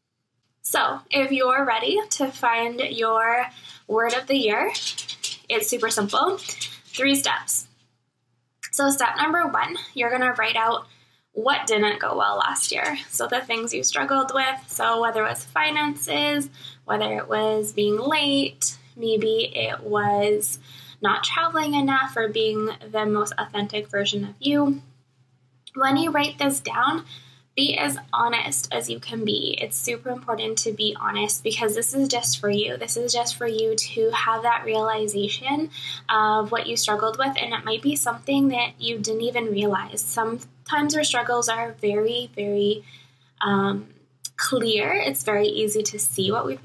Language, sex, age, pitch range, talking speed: English, female, 10-29, 200-250 Hz, 160 wpm